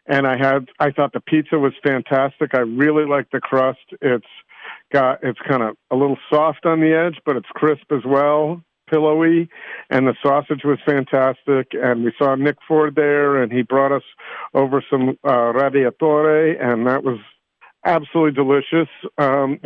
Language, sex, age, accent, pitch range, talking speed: English, male, 50-69, American, 130-160 Hz, 170 wpm